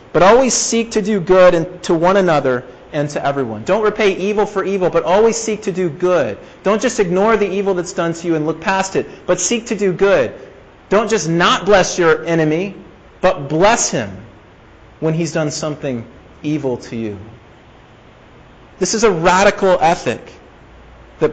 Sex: male